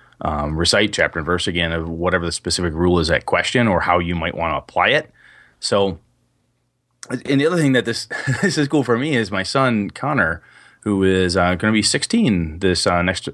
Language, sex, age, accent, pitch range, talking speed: English, male, 30-49, American, 90-120 Hz, 215 wpm